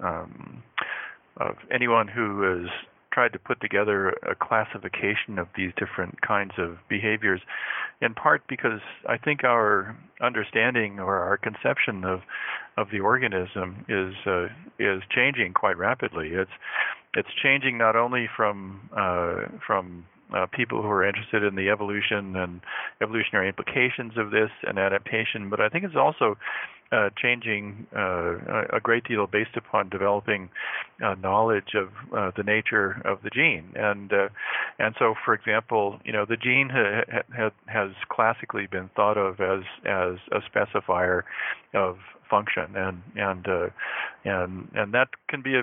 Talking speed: 150 wpm